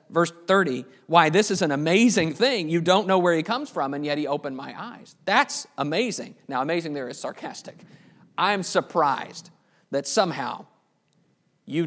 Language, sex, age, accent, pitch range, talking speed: English, male, 50-69, American, 155-190 Hz, 165 wpm